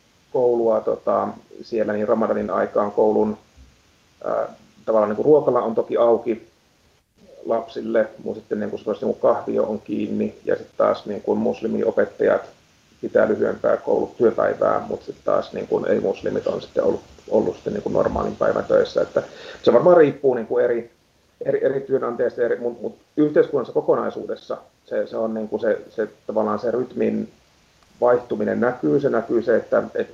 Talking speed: 160 wpm